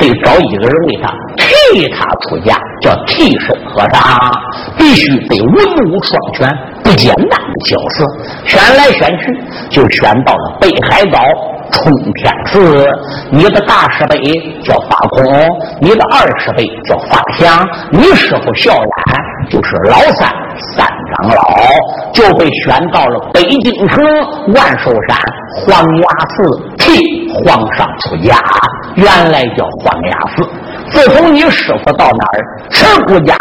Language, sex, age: Chinese, male, 50-69